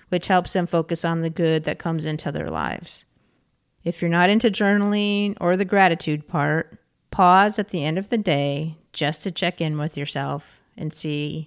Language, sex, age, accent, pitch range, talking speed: English, female, 40-59, American, 155-200 Hz, 190 wpm